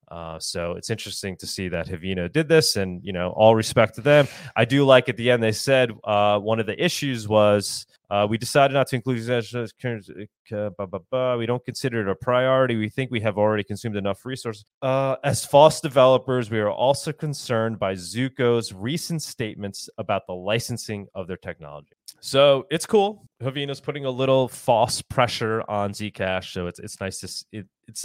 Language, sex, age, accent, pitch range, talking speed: English, male, 30-49, American, 95-125 Hz, 185 wpm